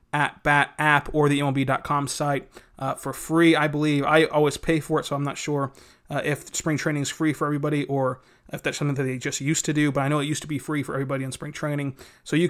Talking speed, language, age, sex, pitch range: 260 wpm, English, 30-49, male, 140-165 Hz